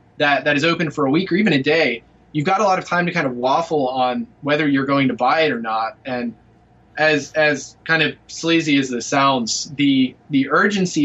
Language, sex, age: English, male, 20-39